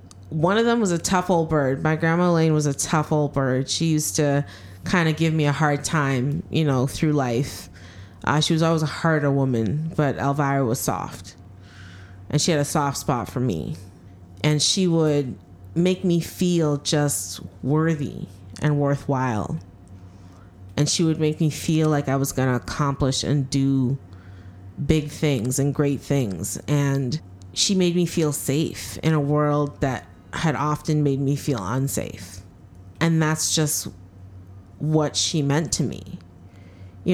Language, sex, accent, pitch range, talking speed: English, female, American, 95-155 Hz, 165 wpm